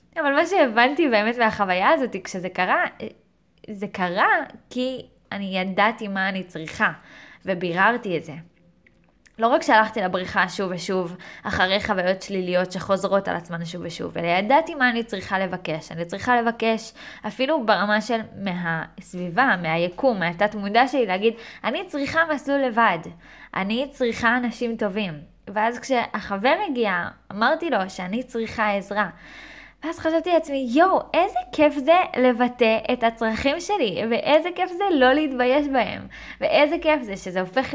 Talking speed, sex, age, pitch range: 145 wpm, female, 10-29, 190-260 Hz